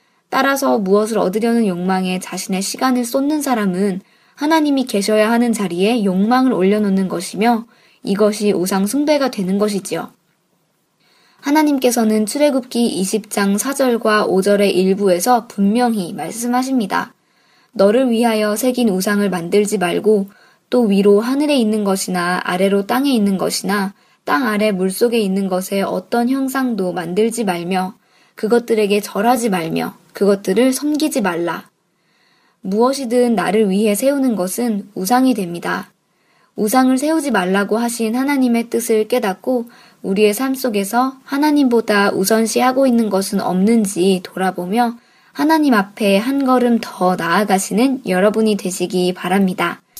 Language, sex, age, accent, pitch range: Korean, male, 20-39, native, 195-245 Hz